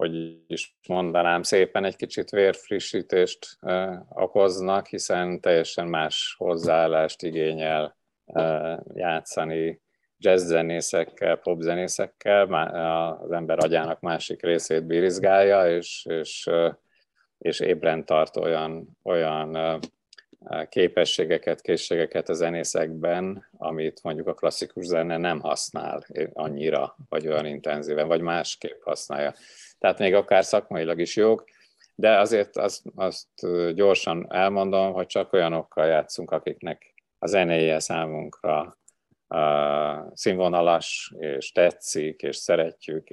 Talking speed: 105 wpm